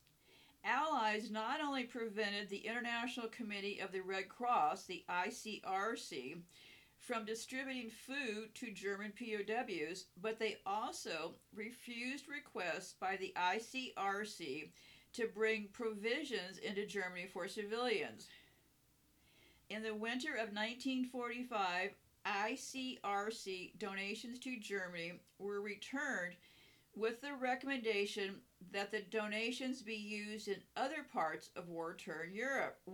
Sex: female